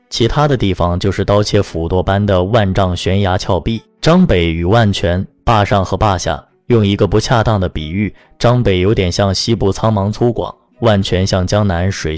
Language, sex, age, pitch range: Chinese, male, 20-39, 95-120 Hz